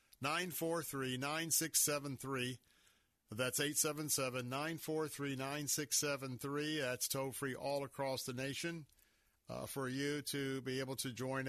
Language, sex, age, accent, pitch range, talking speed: English, male, 50-69, American, 130-155 Hz, 90 wpm